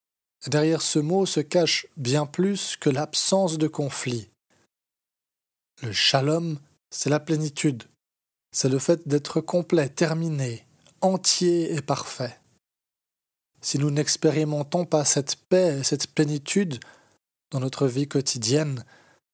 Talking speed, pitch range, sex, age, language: 120 wpm, 130-160 Hz, male, 20-39, French